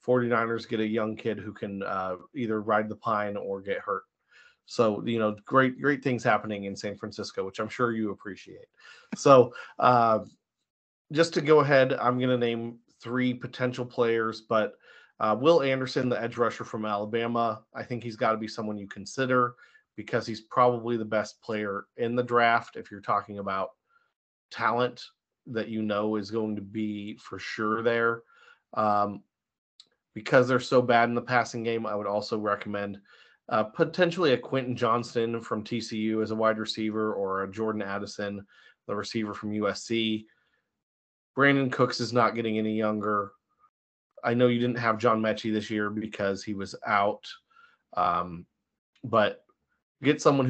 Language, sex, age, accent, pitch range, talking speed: English, male, 30-49, American, 105-125 Hz, 165 wpm